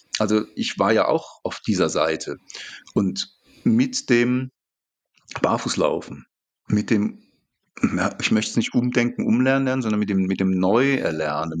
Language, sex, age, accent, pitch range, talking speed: German, male, 40-59, German, 100-130 Hz, 140 wpm